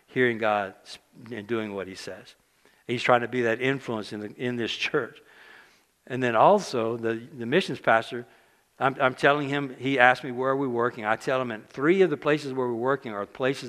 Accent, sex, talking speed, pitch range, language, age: American, male, 215 wpm, 110-135 Hz, English, 60-79